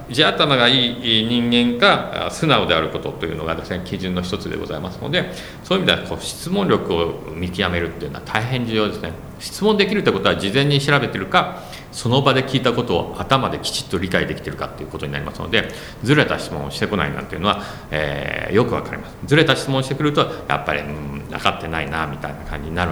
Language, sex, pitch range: Japanese, male, 90-135 Hz